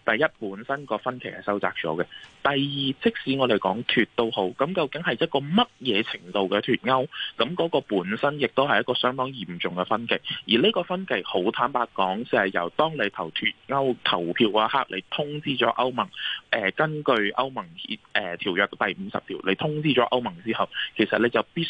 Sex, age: male, 20-39